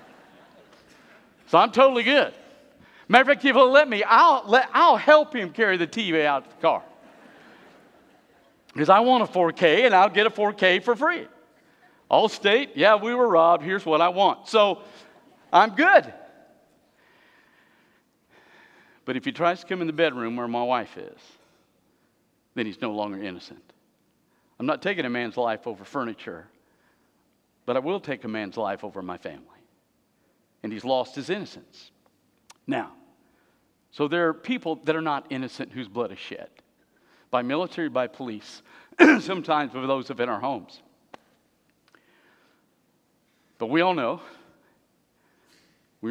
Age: 50-69